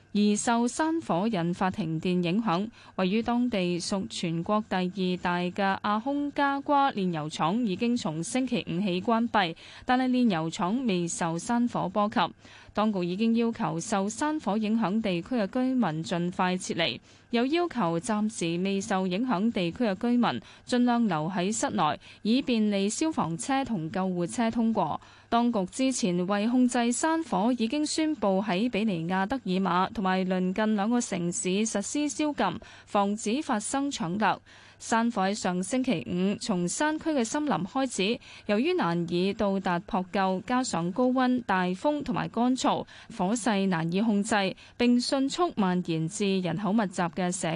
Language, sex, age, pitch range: Chinese, female, 20-39, 185-240 Hz